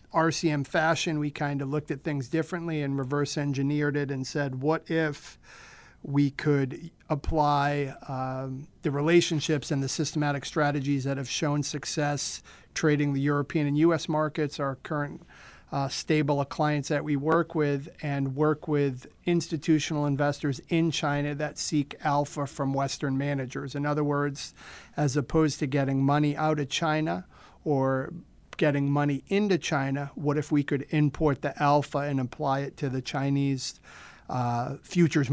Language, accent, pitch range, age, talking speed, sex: English, American, 140-150 Hz, 40-59, 150 wpm, male